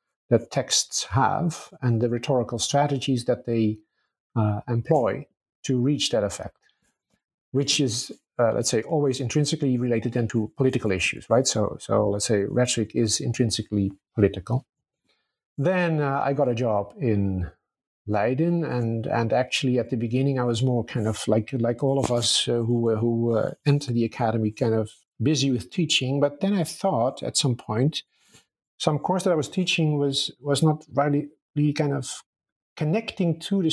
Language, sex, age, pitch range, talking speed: English, male, 50-69, 120-150 Hz, 165 wpm